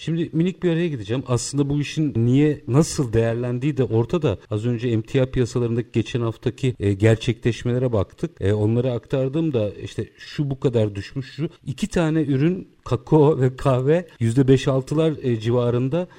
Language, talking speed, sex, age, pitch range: Turkish, 145 wpm, male, 50-69, 120-150 Hz